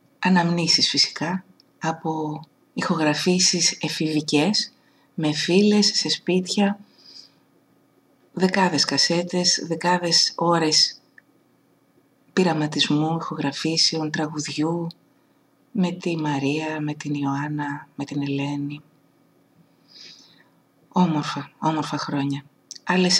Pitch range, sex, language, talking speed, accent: 150-185 Hz, female, Greek, 75 wpm, native